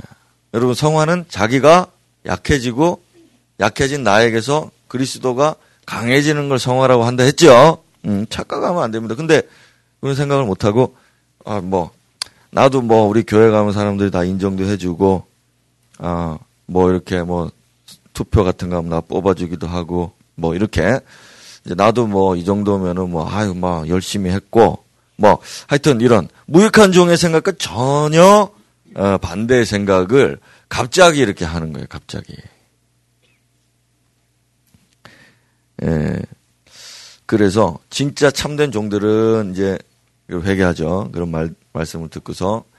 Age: 30-49